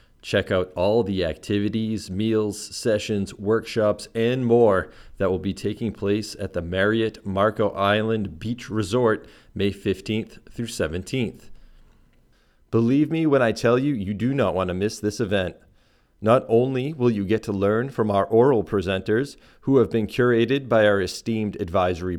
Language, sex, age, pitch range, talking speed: English, male, 30-49, 100-120 Hz, 160 wpm